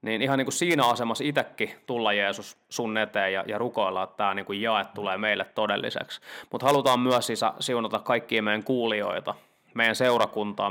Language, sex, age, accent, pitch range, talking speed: Finnish, male, 20-39, native, 105-125 Hz, 175 wpm